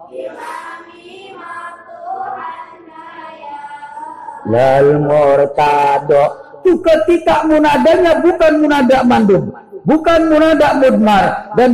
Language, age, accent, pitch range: Indonesian, 50-69, native, 220-335 Hz